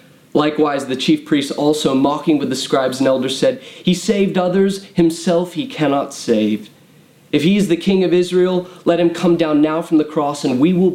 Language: English